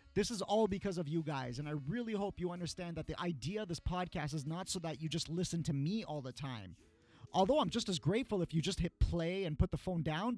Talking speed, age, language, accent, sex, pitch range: 265 wpm, 30-49, English, American, male, 150-200 Hz